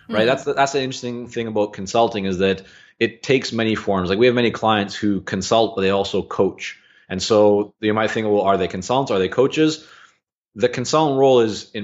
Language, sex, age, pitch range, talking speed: English, male, 30-49, 100-115 Hz, 220 wpm